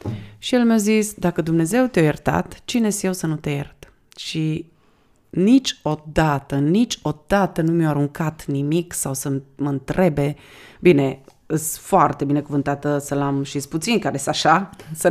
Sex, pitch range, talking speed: female, 150-205 Hz, 145 wpm